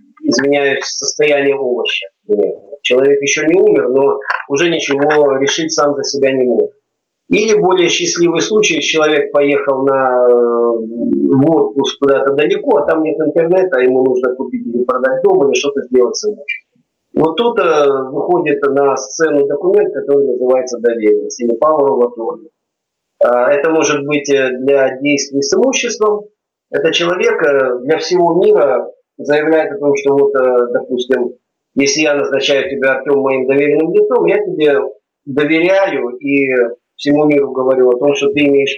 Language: Russian